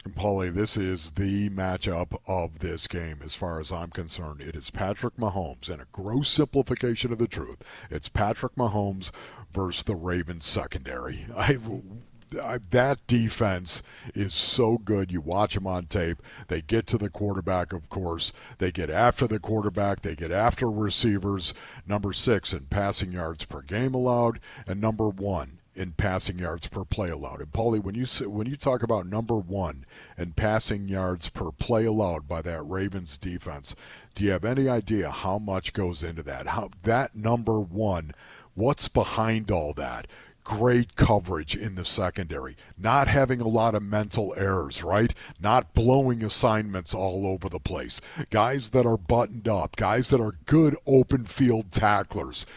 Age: 50-69